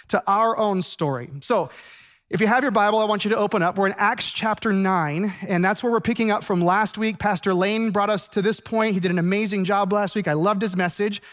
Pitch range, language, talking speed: 175-220 Hz, English, 255 wpm